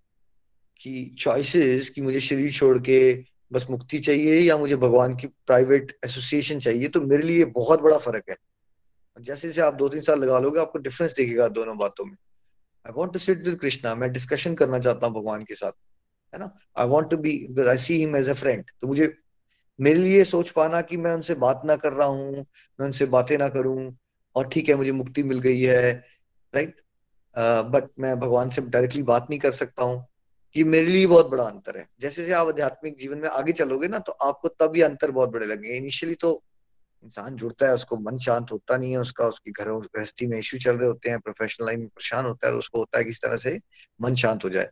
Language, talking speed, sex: Hindi, 185 wpm, male